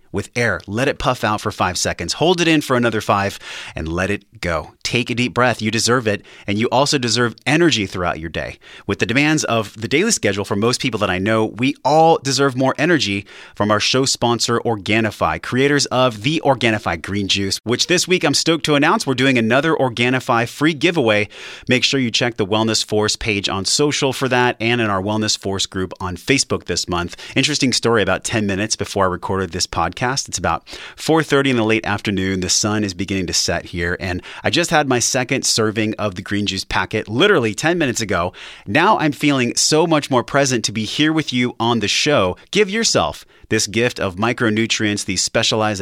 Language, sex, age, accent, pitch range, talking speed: English, male, 30-49, American, 100-130 Hz, 210 wpm